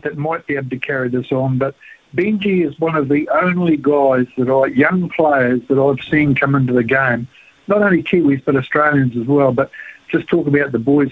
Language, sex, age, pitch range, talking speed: English, male, 60-79, 135-165 Hz, 215 wpm